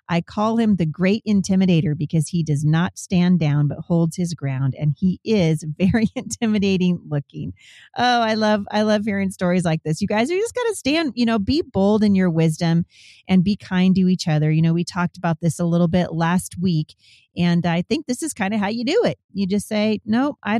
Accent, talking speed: American, 225 wpm